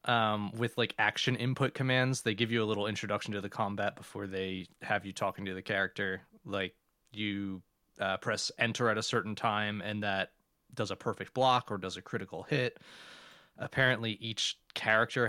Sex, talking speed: male, 180 wpm